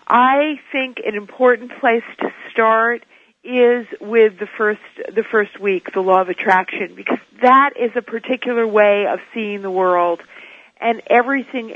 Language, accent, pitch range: English, American, 210-260 Hz